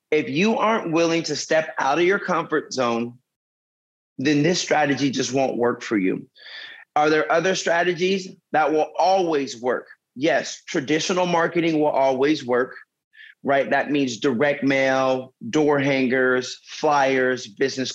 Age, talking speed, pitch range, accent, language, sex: 30-49, 140 wpm, 145-195 Hz, American, English, male